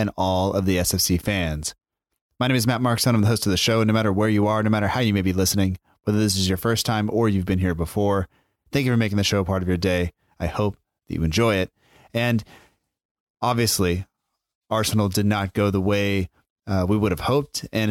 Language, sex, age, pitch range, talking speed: English, male, 30-49, 95-115 Hz, 240 wpm